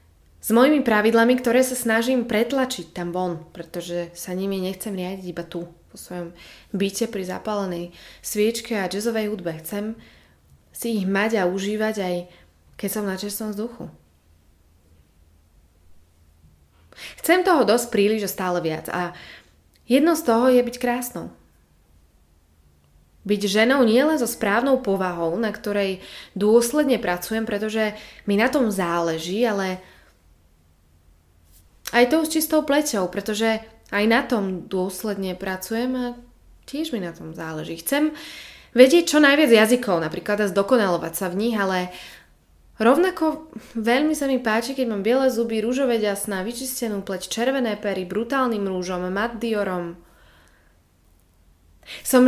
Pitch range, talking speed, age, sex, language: 170-235 Hz, 130 wpm, 20-39, female, Slovak